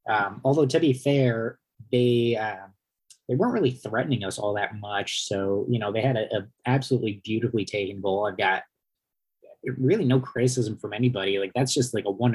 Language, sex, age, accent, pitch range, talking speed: English, male, 20-39, American, 110-130 Hz, 190 wpm